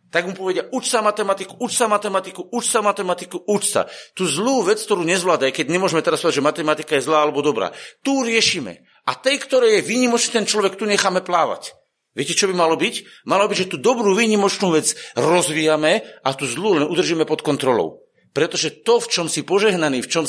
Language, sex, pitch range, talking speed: Slovak, male, 175-235 Hz, 205 wpm